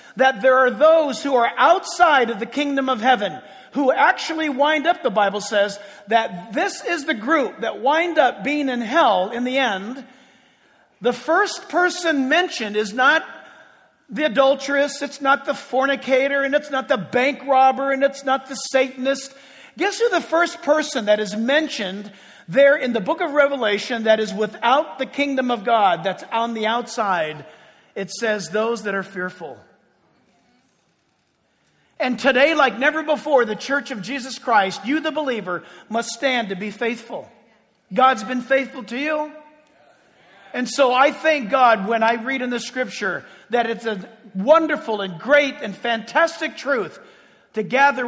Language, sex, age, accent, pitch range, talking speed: English, male, 50-69, American, 225-285 Hz, 165 wpm